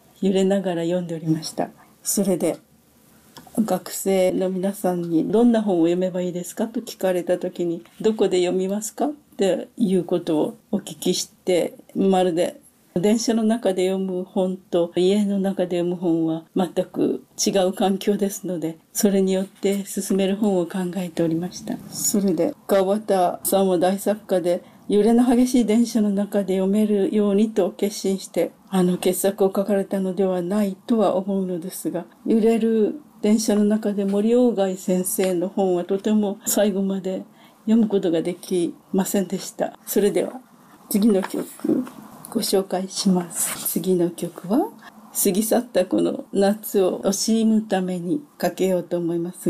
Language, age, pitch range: Japanese, 40-59, 180-215 Hz